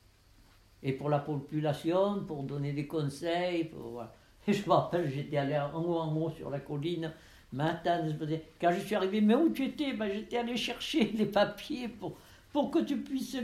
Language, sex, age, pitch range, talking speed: French, male, 60-79, 140-195 Hz, 195 wpm